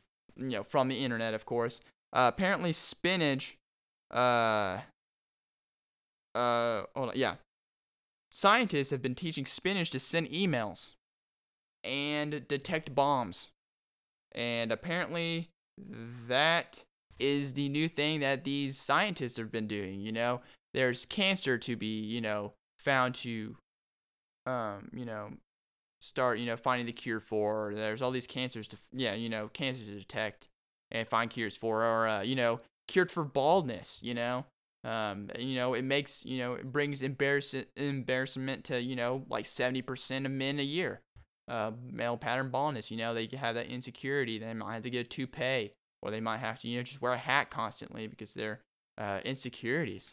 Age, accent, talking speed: 10-29, American, 160 wpm